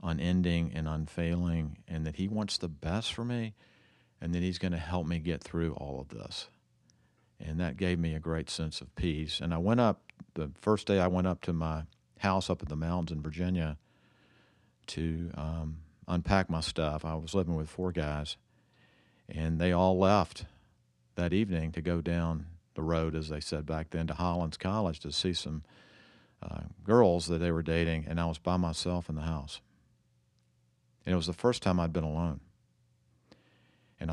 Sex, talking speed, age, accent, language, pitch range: male, 190 wpm, 50-69, American, English, 75-90 Hz